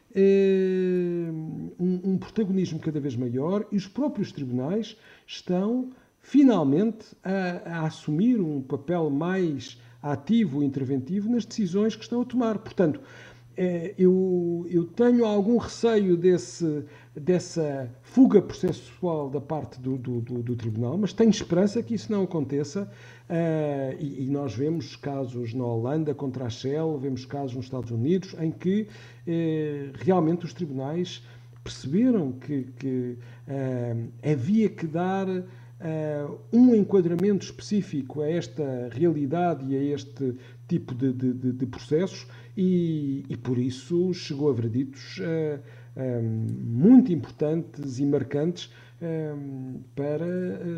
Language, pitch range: Portuguese, 130-180 Hz